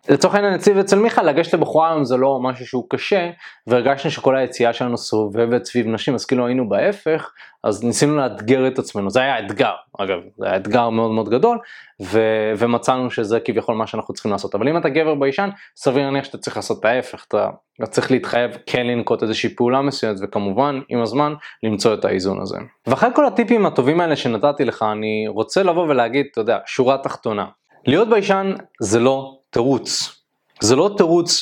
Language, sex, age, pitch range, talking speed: Hebrew, male, 20-39, 120-170 Hz, 165 wpm